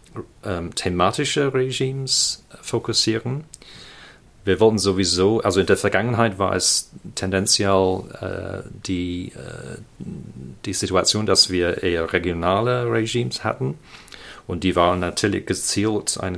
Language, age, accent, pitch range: German, 40-59, German, 90-110 Hz